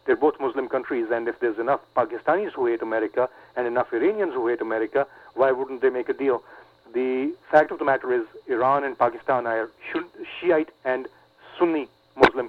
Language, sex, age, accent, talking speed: English, male, 40-59, Indian, 185 wpm